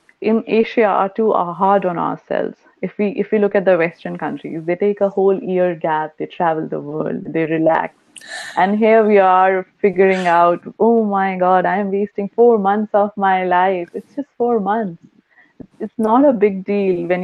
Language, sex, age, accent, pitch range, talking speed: English, female, 30-49, Indian, 160-205 Hz, 200 wpm